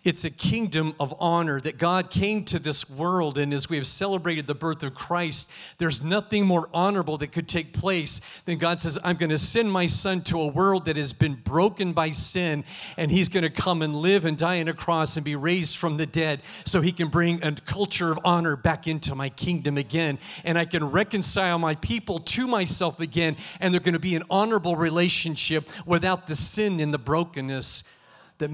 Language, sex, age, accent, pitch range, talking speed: English, male, 40-59, American, 145-175 Hz, 210 wpm